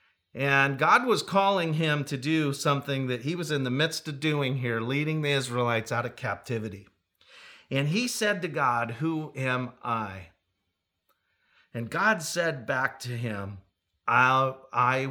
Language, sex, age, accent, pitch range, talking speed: English, male, 40-59, American, 115-165 Hz, 150 wpm